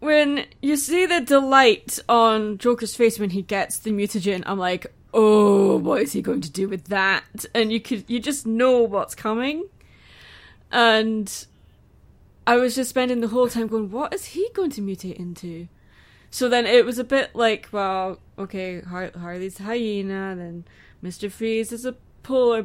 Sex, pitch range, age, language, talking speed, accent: female, 195-245 Hz, 20-39, English, 180 wpm, British